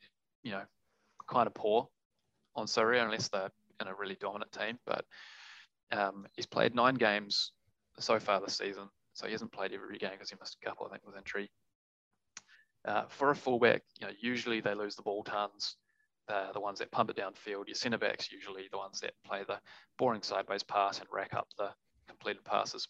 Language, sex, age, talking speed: English, male, 20-39, 195 wpm